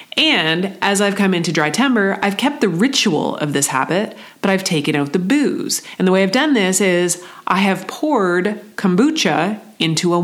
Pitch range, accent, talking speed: 170-225 Hz, American, 195 wpm